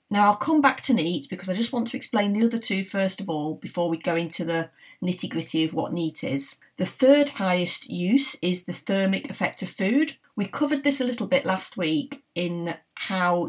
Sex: female